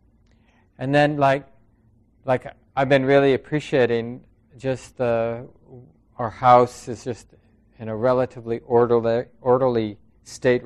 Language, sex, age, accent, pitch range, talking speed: English, male, 40-59, American, 110-135 Hz, 115 wpm